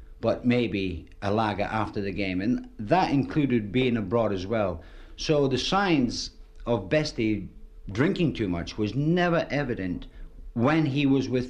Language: English